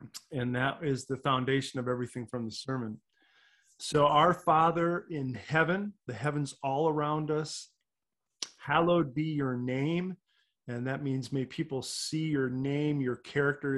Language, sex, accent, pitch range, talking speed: English, male, American, 125-155 Hz, 150 wpm